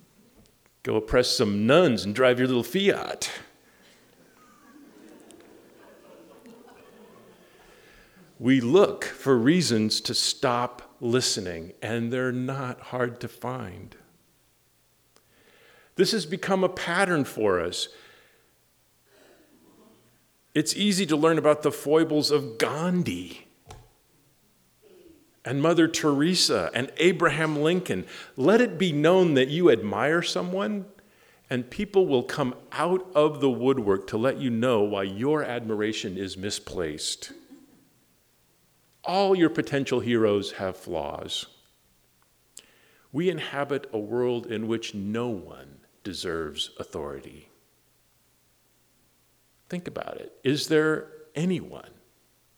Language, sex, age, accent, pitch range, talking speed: English, male, 50-69, American, 115-180 Hz, 105 wpm